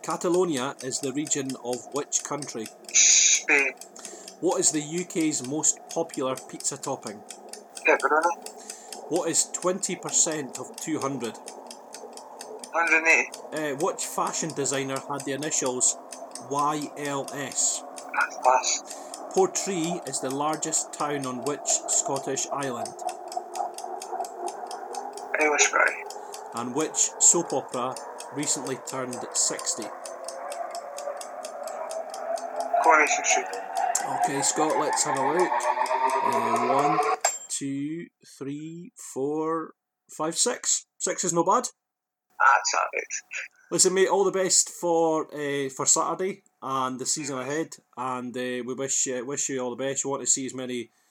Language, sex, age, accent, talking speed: English, male, 40-59, British, 115 wpm